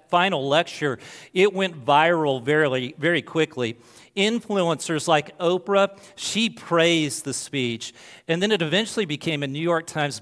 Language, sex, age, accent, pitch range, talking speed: English, male, 40-59, American, 140-175 Hz, 140 wpm